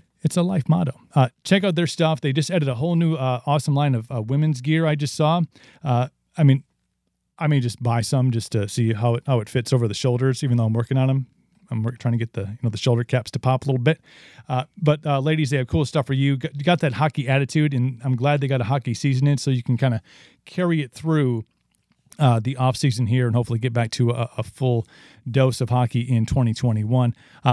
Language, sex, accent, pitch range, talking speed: English, male, American, 120-155 Hz, 250 wpm